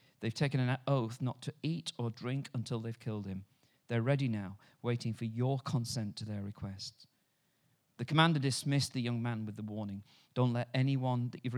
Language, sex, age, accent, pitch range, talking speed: English, male, 40-59, British, 110-140 Hz, 190 wpm